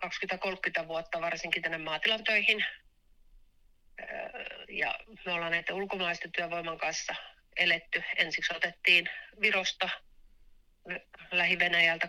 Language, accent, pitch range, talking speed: Finnish, native, 165-200 Hz, 85 wpm